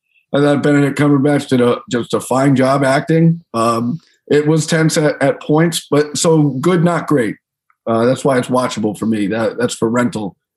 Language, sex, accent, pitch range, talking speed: English, male, American, 115-145 Hz, 195 wpm